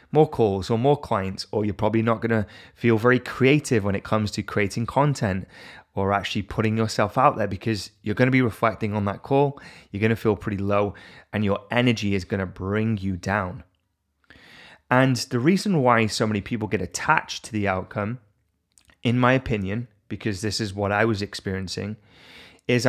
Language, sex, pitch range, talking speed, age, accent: English, male, 100-120 Hz, 190 wpm, 20-39, British